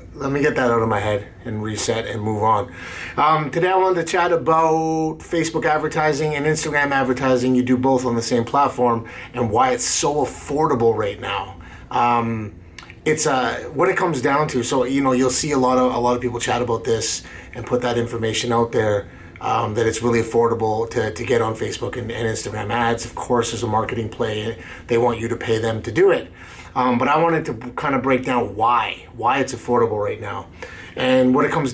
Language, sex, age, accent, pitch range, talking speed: English, male, 30-49, American, 115-140 Hz, 220 wpm